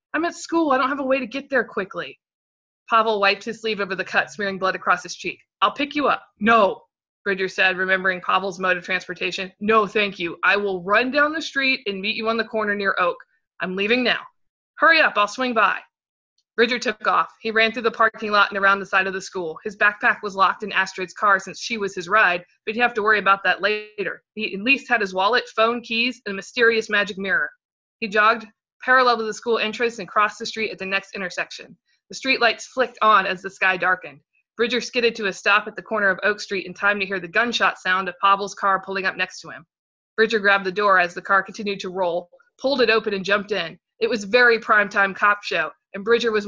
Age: 20-39